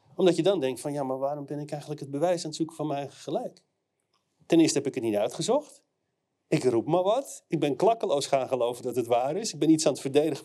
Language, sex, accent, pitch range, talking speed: Dutch, male, Dutch, 140-180 Hz, 260 wpm